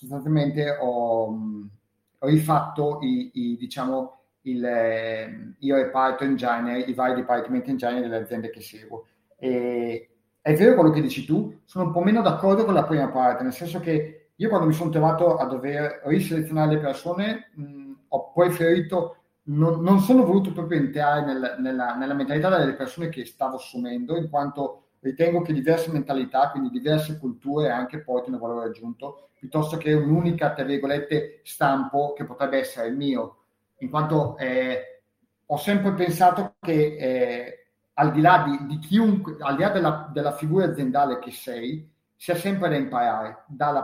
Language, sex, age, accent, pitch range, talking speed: Italian, male, 30-49, native, 130-165 Hz, 160 wpm